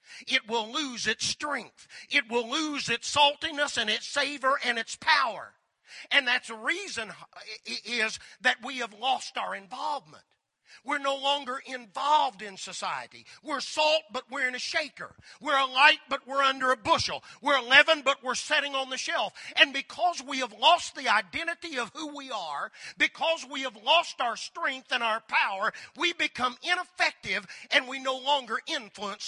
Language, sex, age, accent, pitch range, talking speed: English, male, 40-59, American, 235-300 Hz, 170 wpm